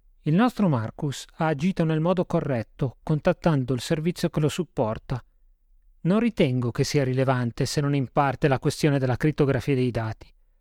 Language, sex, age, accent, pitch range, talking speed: Italian, male, 40-59, native, 135-175 Hz, 165 wpm